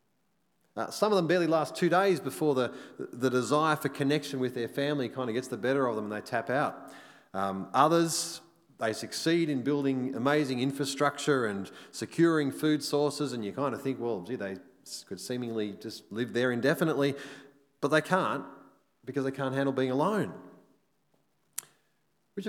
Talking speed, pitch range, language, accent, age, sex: 170 wpm, 120-150 Hz, English, Australian, 30-49, male